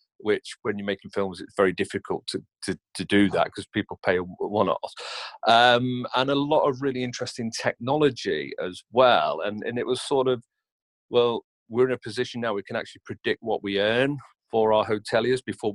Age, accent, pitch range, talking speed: 40-59, British, 100-130 Hz, 195 wpm